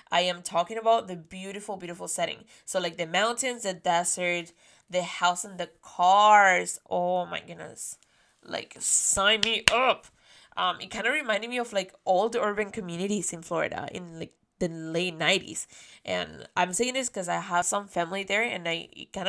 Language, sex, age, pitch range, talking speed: English, female, 10-29, 175-205 Hz, 185 wpm